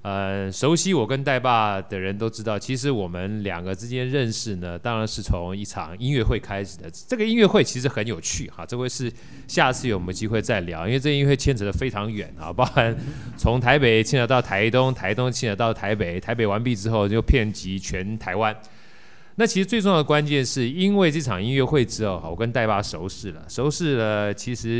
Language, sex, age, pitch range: Chinese, male, 20-39, 95-130 Hz